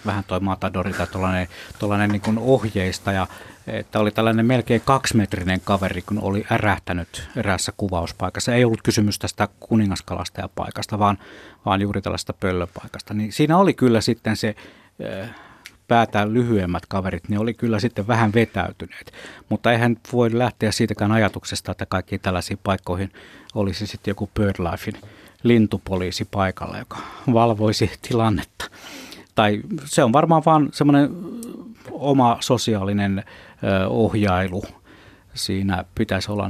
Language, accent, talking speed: Finnish, native, 125 wpm